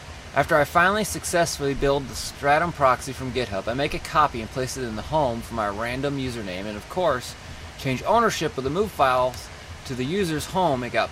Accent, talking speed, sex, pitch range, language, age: American, 210 wpm, male, 110-150 Hz, English, 20-39